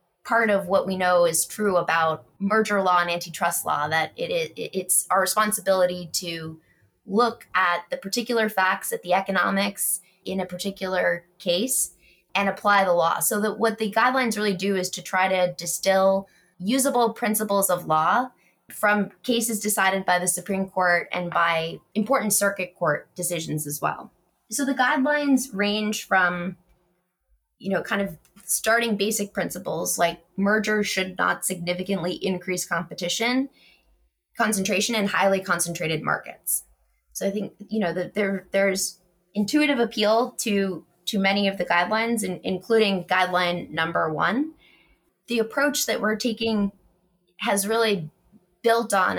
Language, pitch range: English, 180-215 Hz